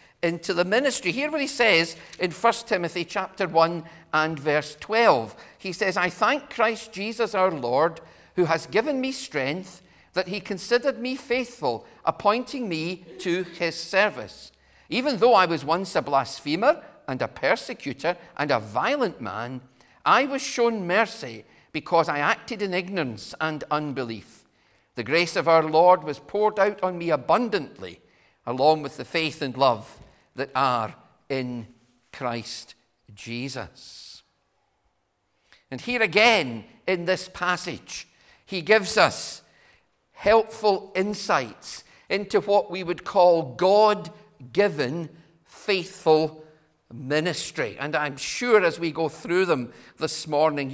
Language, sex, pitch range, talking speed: English, male, 150-205 Hz, 135 wpm